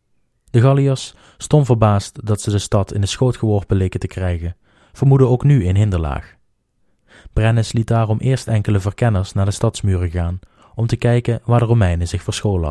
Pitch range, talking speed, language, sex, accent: 95-120 Hz, 180 wpm, Dutch, male, Dutch